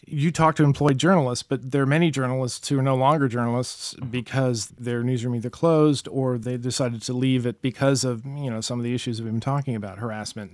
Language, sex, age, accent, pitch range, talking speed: English, male, 40-59, American, 120-145 Hz, 230 wpm